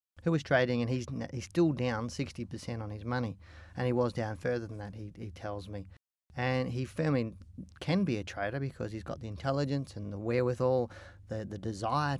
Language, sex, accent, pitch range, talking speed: English, male, Australian, 110-130 Hz, 200 wpm